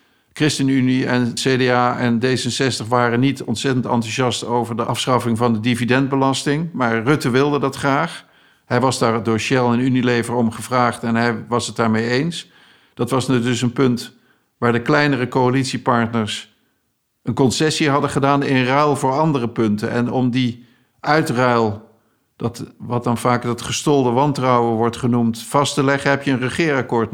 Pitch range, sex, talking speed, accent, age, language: 120-135 Hz, male, 160 wpm, Dutch, 50-69, Dutch